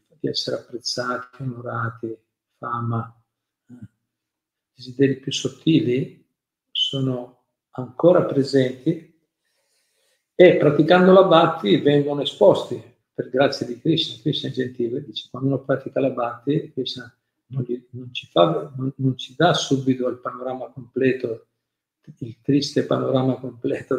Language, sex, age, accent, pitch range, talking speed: Italian, male, 50-69, native, 120-145 Hz, 120 wpm